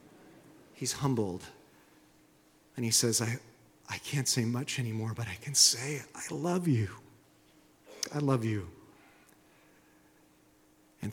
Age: 40-59